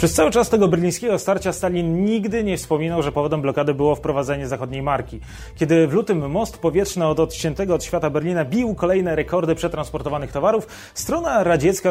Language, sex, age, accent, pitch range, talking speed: Polish, male, 30-49, native, 140-170 Hz, 170 wpm